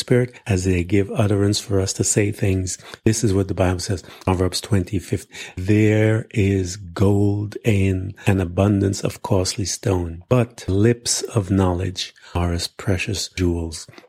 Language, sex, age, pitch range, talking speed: English, male, 50-69, 95-115 Hz, 150 wpm